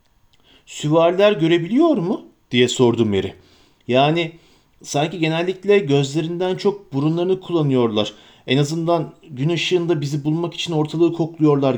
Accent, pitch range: native, 130-170 Hz